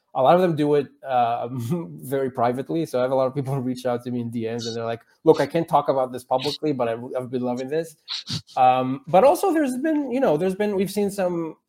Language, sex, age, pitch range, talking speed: English, male, 20-39, 115-145 Hz, 255 wpm